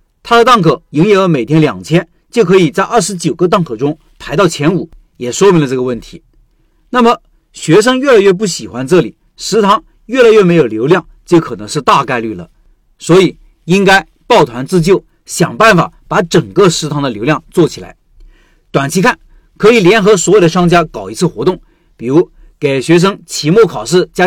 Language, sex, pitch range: Chinese, male, 160-210 Hz